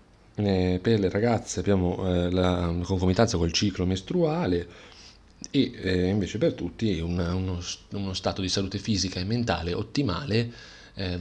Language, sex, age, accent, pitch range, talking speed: Italian, male, 30-49, native, 90-110 Hz, 150 wpm